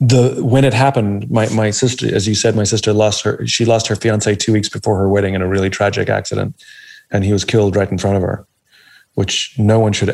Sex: male